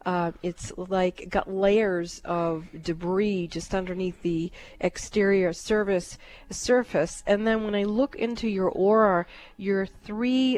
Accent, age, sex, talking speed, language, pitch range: American, 40-59, female, 130 wpm, English, 175-210 Hz